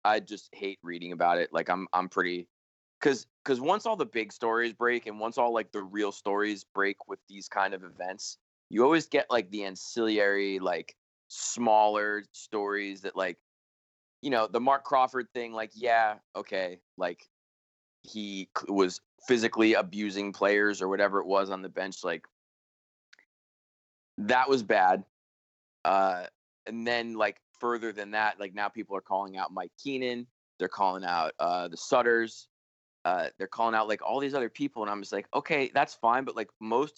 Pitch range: 95-115 Hz